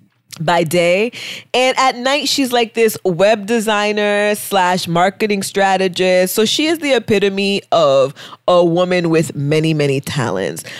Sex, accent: female, American